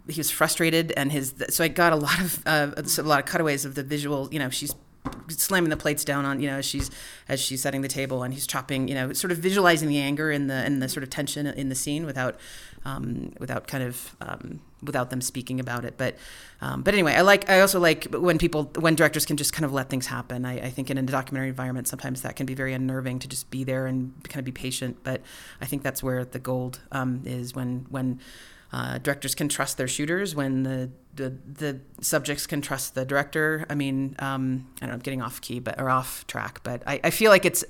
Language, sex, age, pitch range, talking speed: English, female, 30-49, 130-145 Hz, 245 wpm